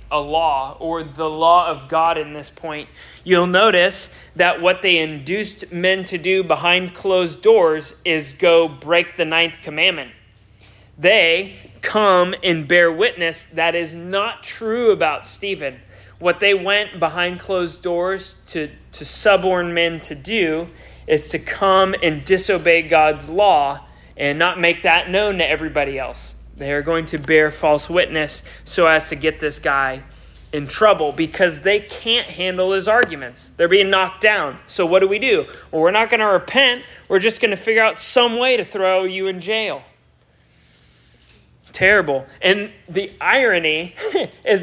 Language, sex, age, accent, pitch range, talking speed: English, male, 30-49, American, 155-195 Hz, 160 wpm